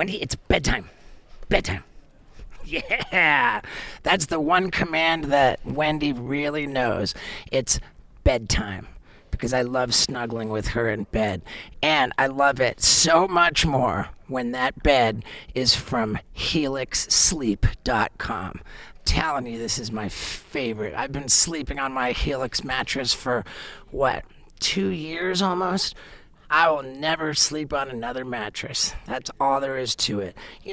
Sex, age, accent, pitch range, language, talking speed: male, 40-59, American, 120-165 Hz, English, 135 wpm